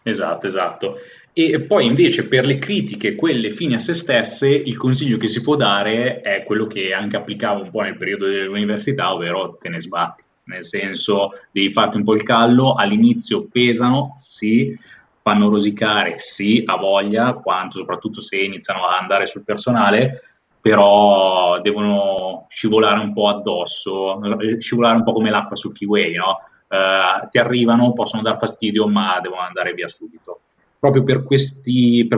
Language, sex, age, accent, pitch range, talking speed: Italian, male, 20-39, native, 100-125 Hz, 160 wpm